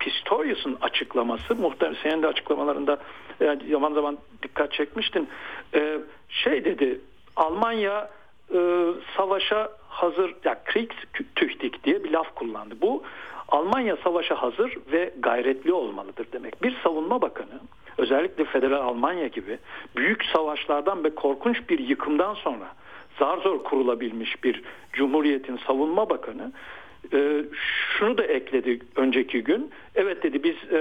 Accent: native